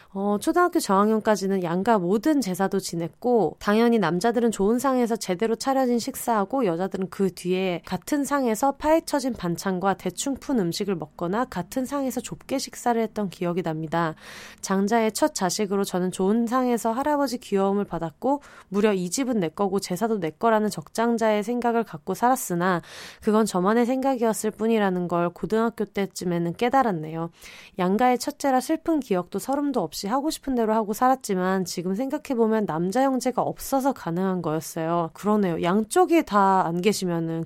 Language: Korean